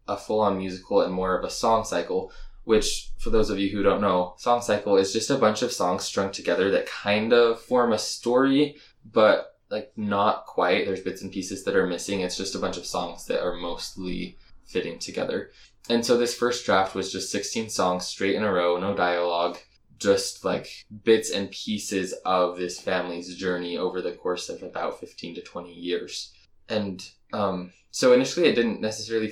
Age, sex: 20-39, male